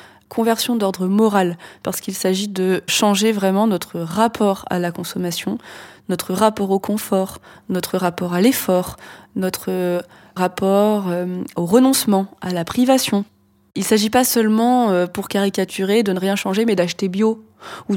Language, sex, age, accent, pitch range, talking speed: French, female, 20-39, French, 185-220 Hz, 150 wpm